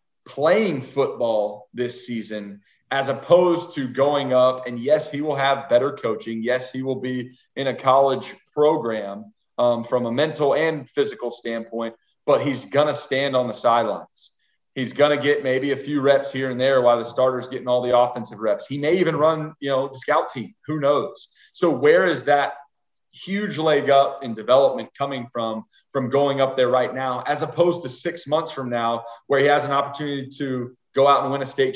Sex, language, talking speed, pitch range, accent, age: male, English, 195 wpm, 125-155 Hz, American, 30-49